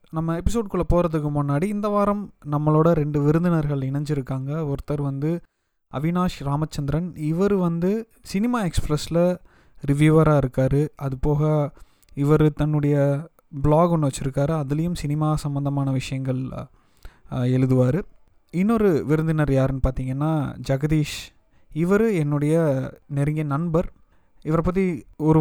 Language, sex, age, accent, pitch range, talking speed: Tamil, male, 20-39, native, 135-165 Hz, 105 wpm